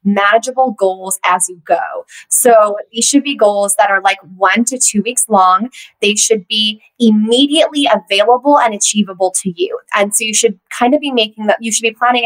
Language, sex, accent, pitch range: English, female, American, 205-265 Hz